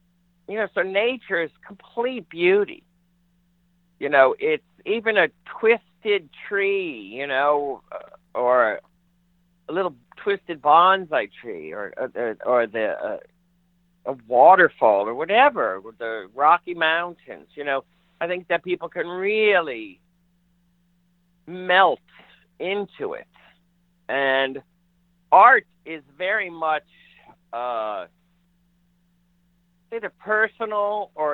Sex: male